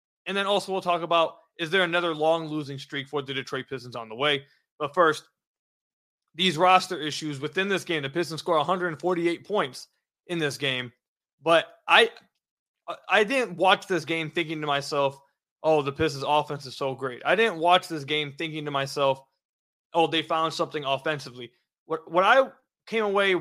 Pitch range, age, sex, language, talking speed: 150-205 Hz, 20-39, male, English, 180 wpm